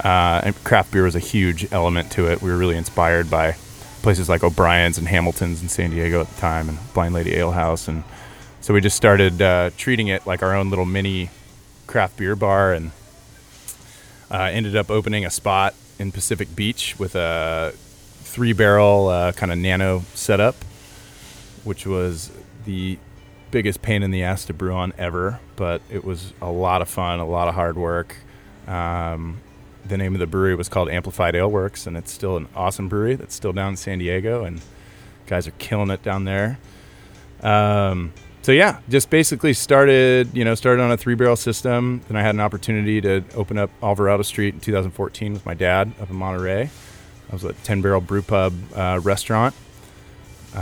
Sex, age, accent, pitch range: male, 20-39, American, 90-105 Hz